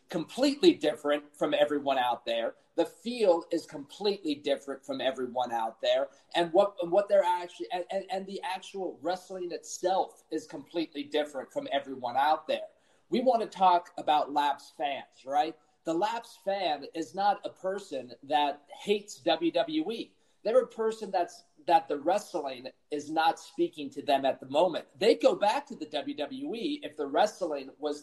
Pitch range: 150-225 Hz